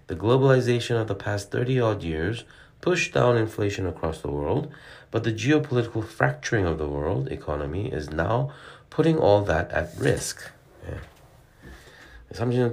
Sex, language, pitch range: male, Korean, 80-120 Hz